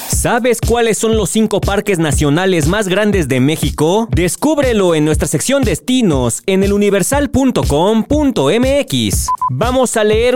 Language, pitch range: Spanish, 150-225 Hz